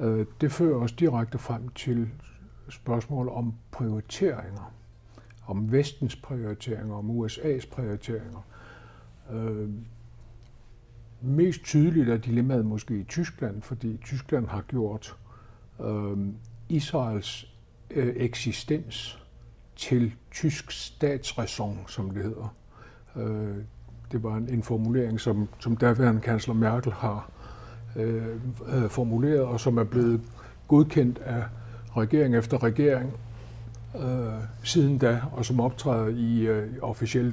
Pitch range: 110-125 Hz